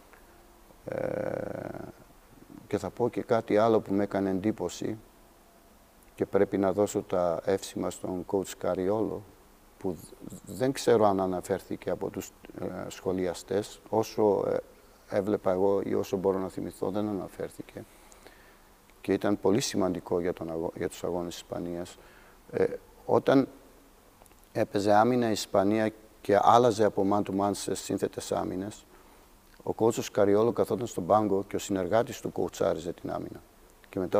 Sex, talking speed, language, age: male, 140 wpm, Greek, 50-69